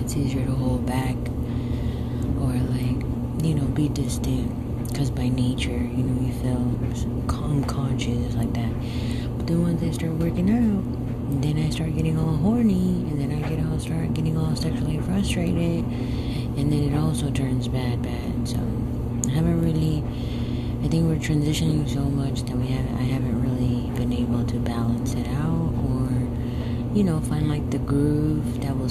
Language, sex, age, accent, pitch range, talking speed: English, female, 30-49, American, 120-130 Hz, 170 wpm